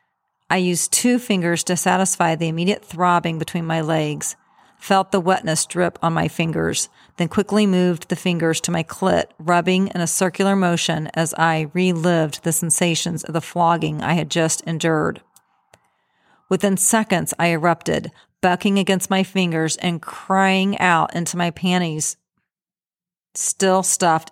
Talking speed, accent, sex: 150 wpm, American, female